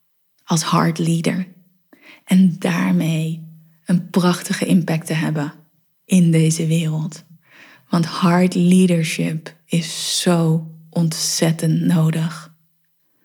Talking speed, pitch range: 90 wpm, 160-180 Hz